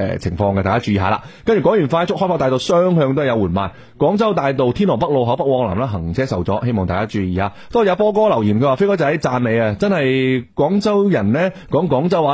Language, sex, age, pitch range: Chinese, male, 30-49, 100-145 Hz